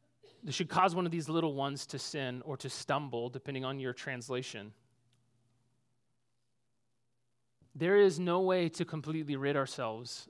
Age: 30-49